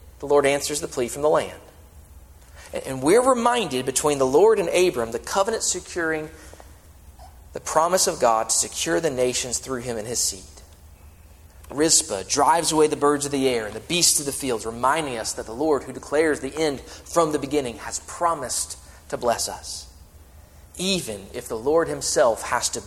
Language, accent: English, American